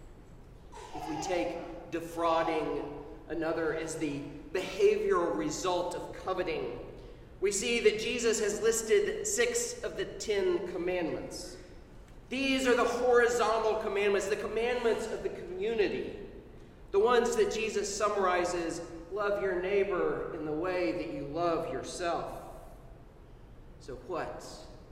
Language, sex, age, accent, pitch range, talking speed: English, male, 40-59, American, 165-255 Hz, 120 wpm